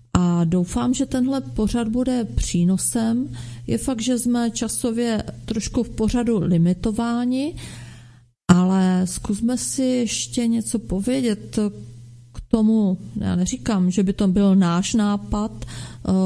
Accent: native